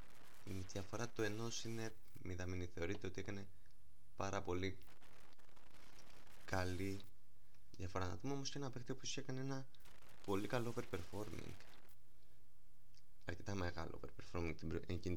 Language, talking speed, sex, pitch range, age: Greek, 125 wpm, male, 95-120 Hz, 20-39